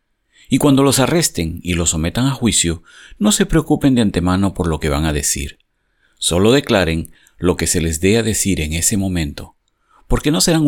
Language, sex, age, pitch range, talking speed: Spanish, male, 50-69, 80-105 Hz, 195 wpm